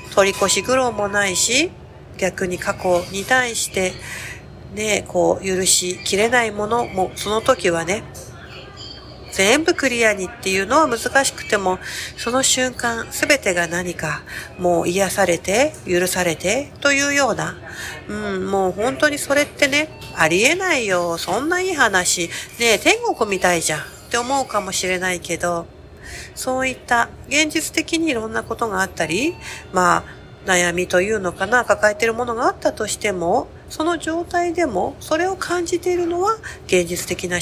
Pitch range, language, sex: 185-265 Hz, Japanese, female